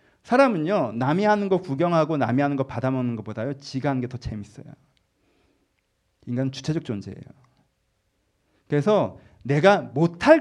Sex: male